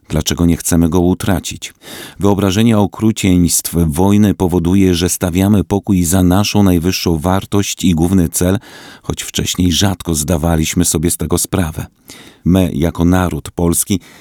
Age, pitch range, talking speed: 40-59, 85-95 Hz, 130 wpm